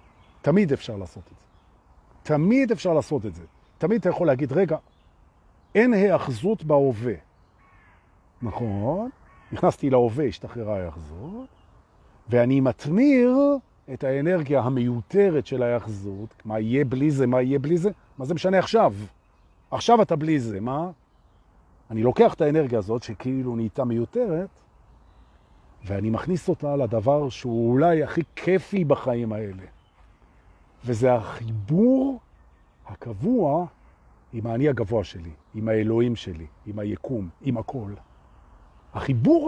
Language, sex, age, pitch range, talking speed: Hebrew, male, 40-59, 100-155 Hz, 115 wpm